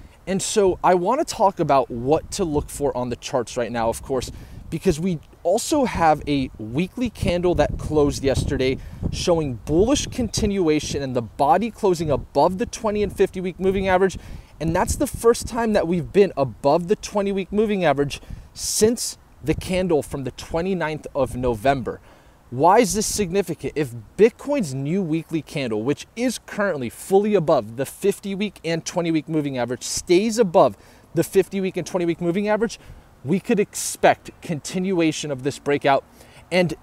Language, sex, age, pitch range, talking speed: English, male, 20-39, 125-190 Hz, 170 wpm